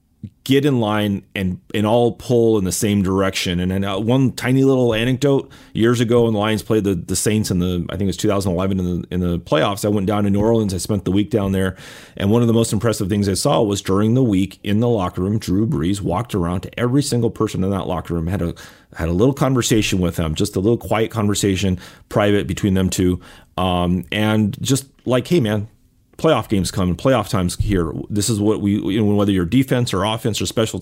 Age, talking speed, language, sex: 30-49, 240 wpm, English, male